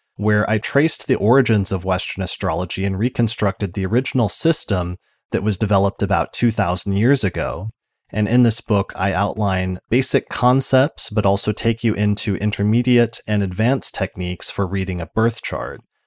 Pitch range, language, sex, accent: 95-115 Hz, English, male, American